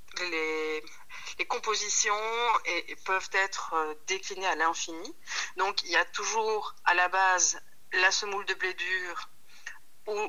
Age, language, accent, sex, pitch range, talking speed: 40-59, French, French, female, 160-195 Hz, 140 wpm